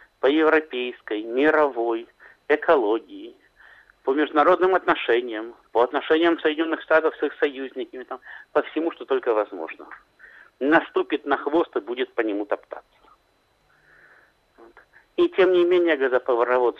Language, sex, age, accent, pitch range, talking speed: Russian, male, 50-69, native, 140-200 Hz, 120 wpm